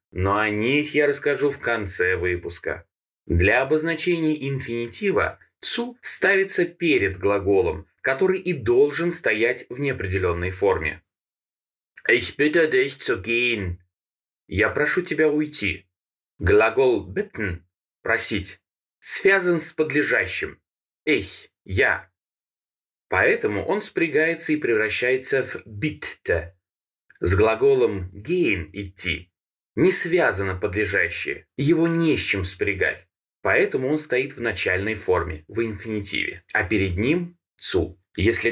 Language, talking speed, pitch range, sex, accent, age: Russian, 115 wpm, 95-155 Hz, male, native, 20-39